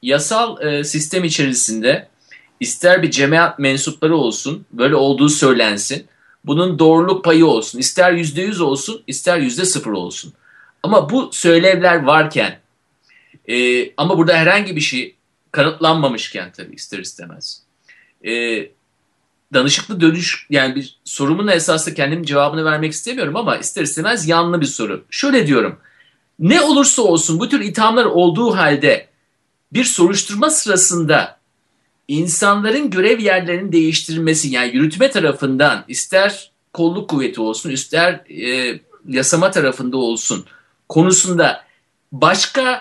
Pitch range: 150-200 Hz